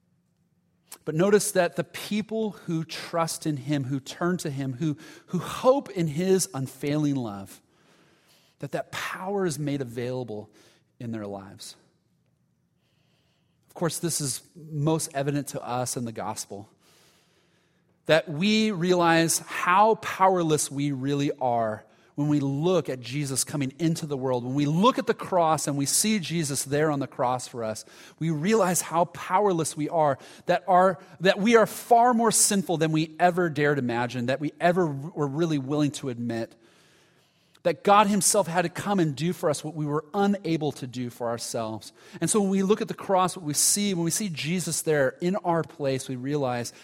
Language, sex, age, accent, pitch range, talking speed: English, male, 30-49, American, 140-180 Hz, 180 wpm